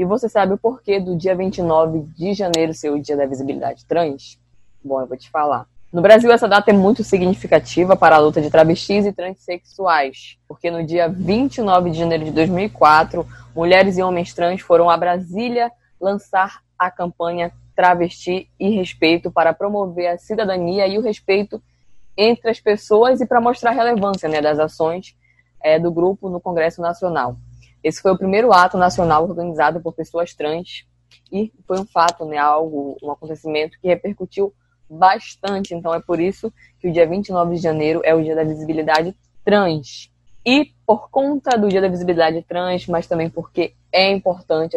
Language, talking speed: Portuguese, 175 wpm